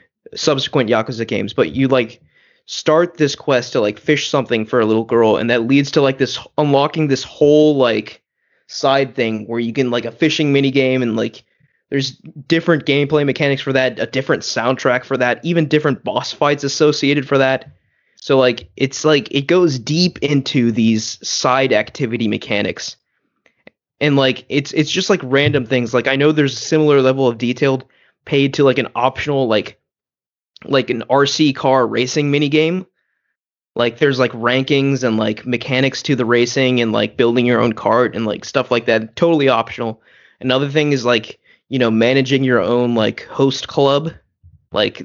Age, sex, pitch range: 20-39, male, 120-145 Hz